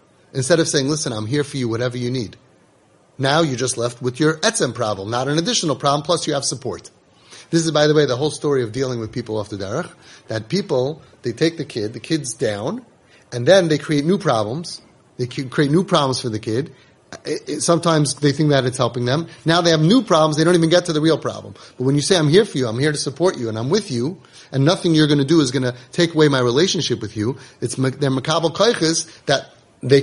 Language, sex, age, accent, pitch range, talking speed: English, male, 30-49, American, 120-160 Hz, 250 wpm